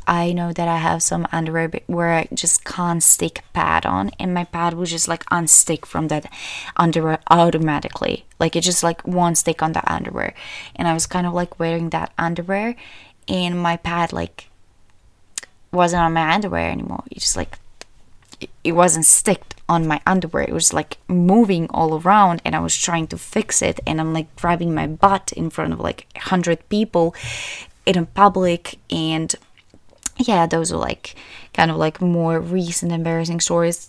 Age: 20-39